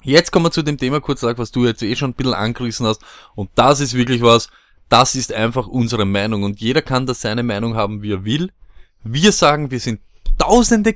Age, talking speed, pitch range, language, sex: 20-39, 225 wpm, 120-160 Hz, German, male